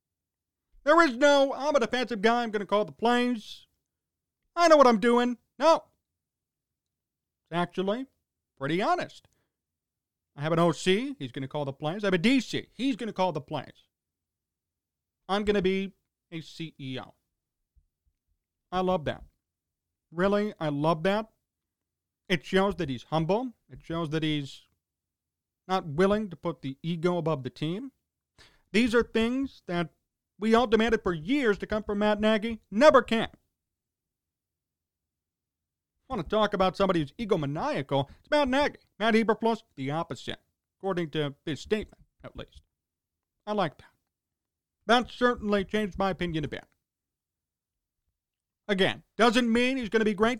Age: 40-59